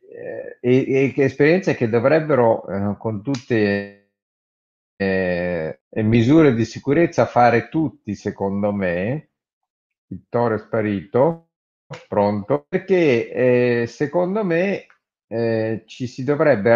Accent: native